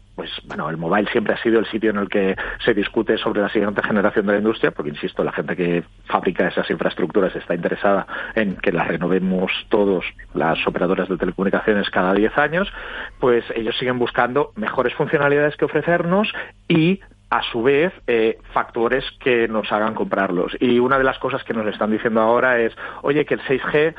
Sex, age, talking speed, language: male, 40-59, 190 wpm, Spanish